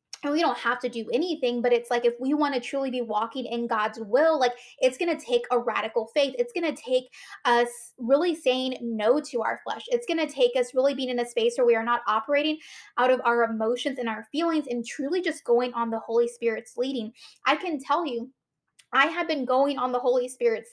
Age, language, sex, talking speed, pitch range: 10-29, English, female, 235 wpm, 235-305 Hz